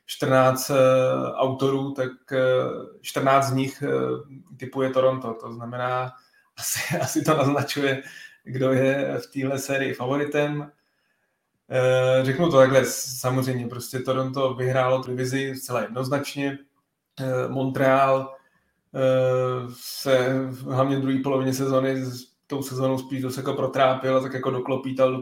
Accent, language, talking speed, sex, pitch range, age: native, Czech, 125 wpm, male, 125-140 Hz, 20-39